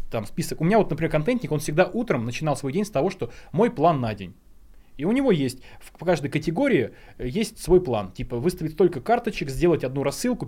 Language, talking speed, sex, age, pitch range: Russian, 210 wpm, male, 20-39, 125-170 Hz